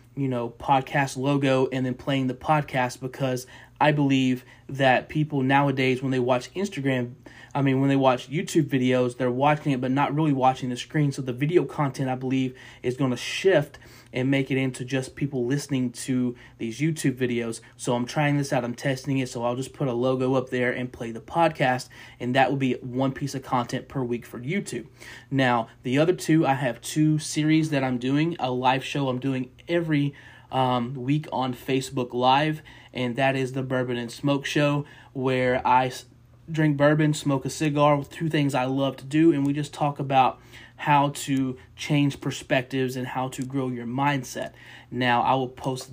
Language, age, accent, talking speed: English, 30-49, American, 195 wpm